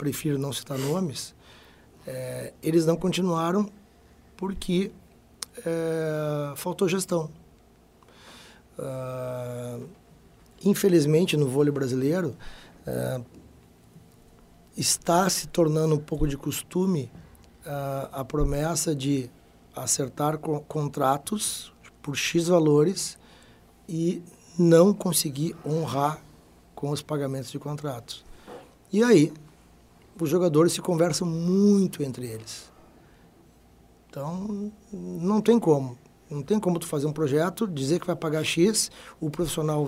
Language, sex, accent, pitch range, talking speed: Portuguese, male, Brazilian, 140-170 Hz, 100 wpm